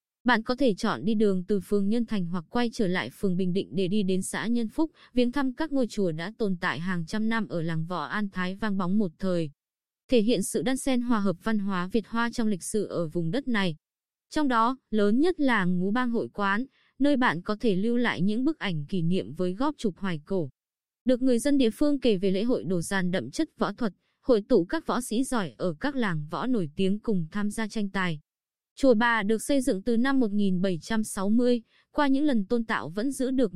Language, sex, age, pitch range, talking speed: Vietnamese, female, 20-39, 185-245 Hz, 240 wpm